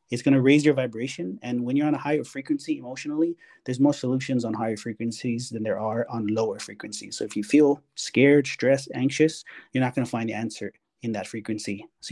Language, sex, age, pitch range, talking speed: English, male, 30-49, 120-145 Hz, 220 wpm